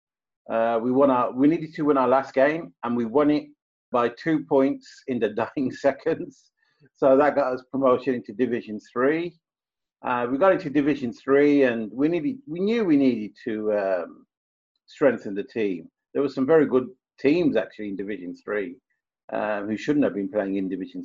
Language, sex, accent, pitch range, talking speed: English, male, British, 115-150 Hz, 190 wpm